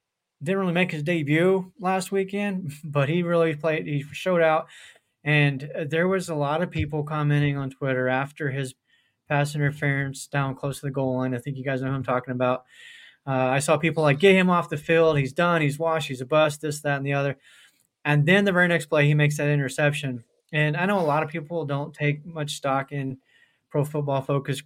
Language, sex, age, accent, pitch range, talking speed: English, male, 20-39, American, 140-165 Hz, 215 wpm